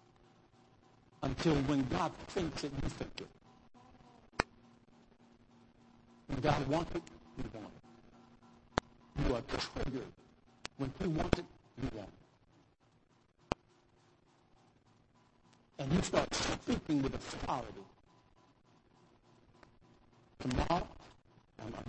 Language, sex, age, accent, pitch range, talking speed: English, male, 60-79, American, 120-140 Hz, 95 wpm